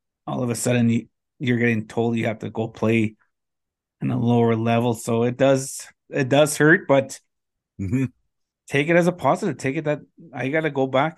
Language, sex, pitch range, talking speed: English, male, 115-140 Hz, 195 wpm